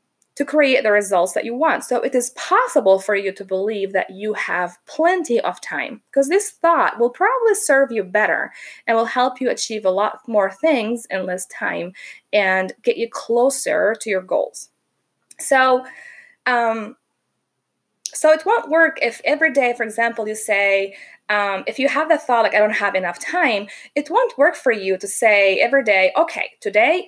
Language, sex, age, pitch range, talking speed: English, female, 20-39, 215-300 Hz, 185 wpm